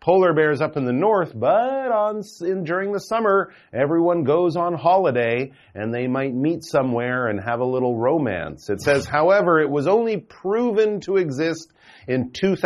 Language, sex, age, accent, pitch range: Chinese, male, 40-59, American, 130-180 Hz